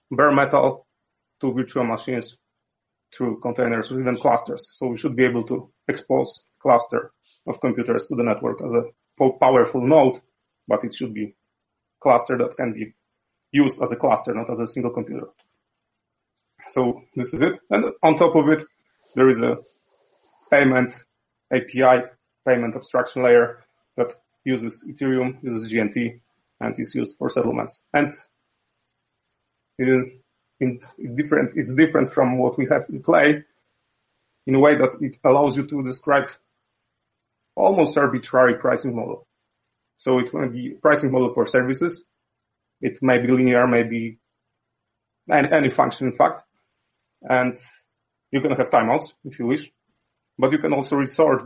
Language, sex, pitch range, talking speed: English, male, 120-135 Hz, 150 wpm